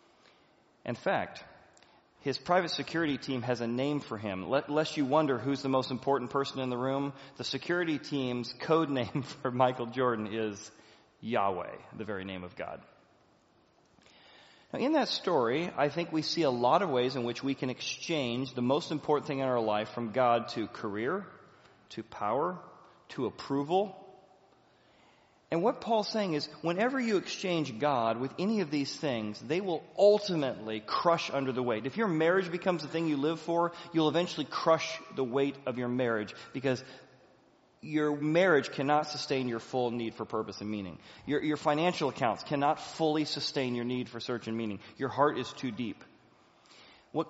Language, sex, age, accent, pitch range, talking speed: English, male, 40-59, American, 125-160 Hz, 175 wpm